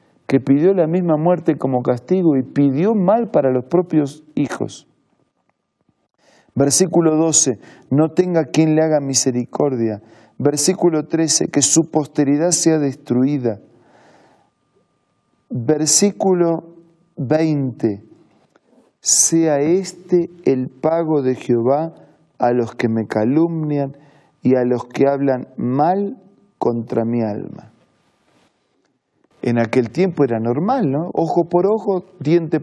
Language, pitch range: Spanish, 135-170 Hz